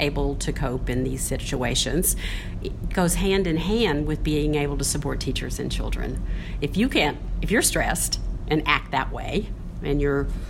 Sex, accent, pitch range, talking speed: female, American, 135-170 Hz, 175 wpm